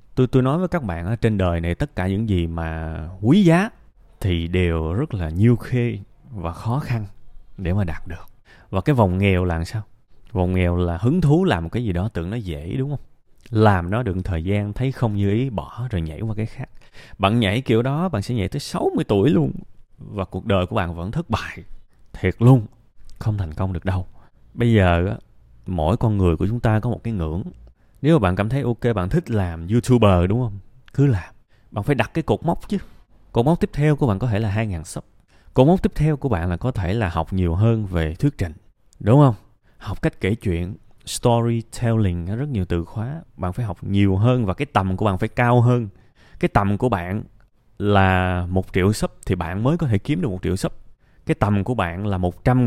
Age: 20-39